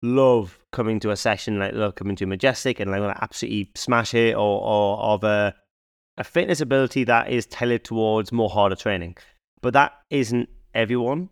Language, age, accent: English, 20-39, British